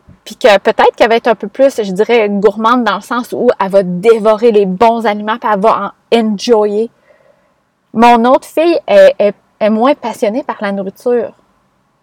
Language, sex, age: French, female, 20-39